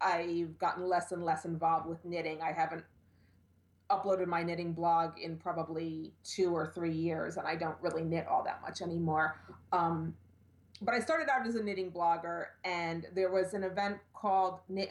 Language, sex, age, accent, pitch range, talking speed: English, female, 30-49, American, 165-205 Hz, 180 wpm